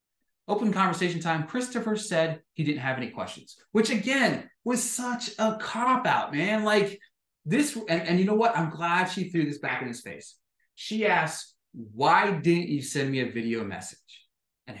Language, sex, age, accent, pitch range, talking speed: English, male, 30-49, American, 125-210 Hz, 180 wpm